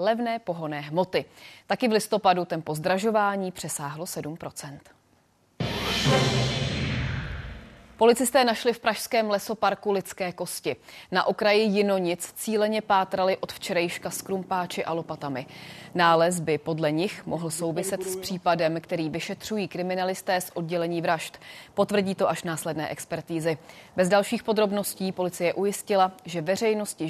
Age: 30-49